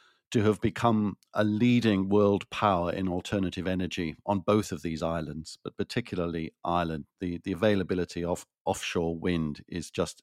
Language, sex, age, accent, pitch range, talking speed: English, male, 50-69, British, 90-105 Hz, 155 wpm